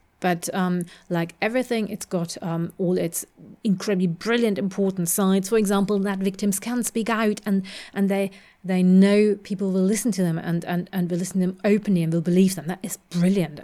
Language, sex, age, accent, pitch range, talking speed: English, female, 30-49, British, 180-215 Hz, 200 wpm